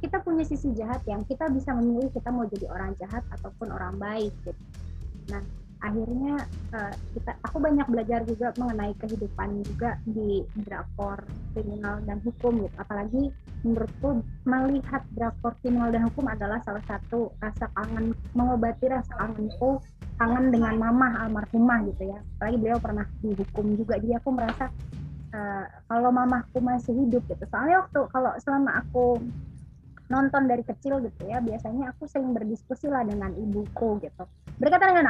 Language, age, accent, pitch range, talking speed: Indonesian, 20-39, native, 215-260 Hz, 150 wpm